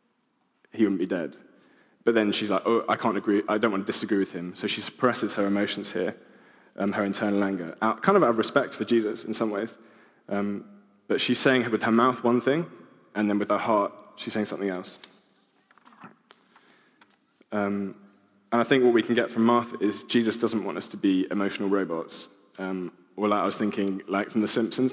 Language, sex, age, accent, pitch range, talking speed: English, male, 20-39, British, 100-115 Hz, 210 wpm